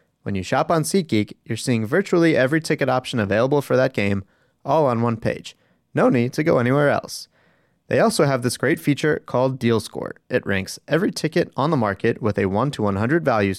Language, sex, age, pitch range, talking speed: English, male, 30-49, 105-145 Hz, 210 wpm